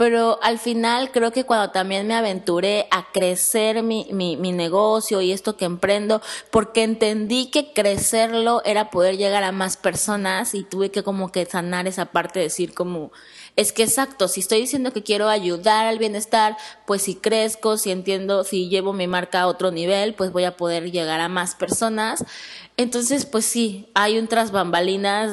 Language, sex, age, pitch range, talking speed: Spanish, female, 20-39, 185-220 Hz, 180 wpm